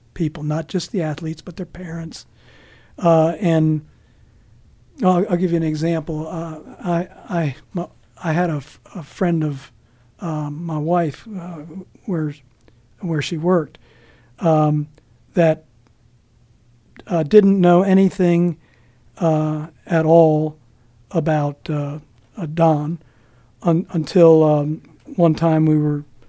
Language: English